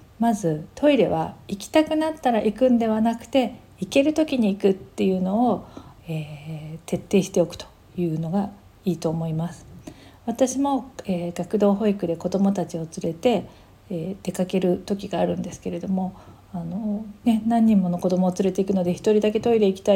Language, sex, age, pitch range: Japanese, female, 40-59, 175-220 Hz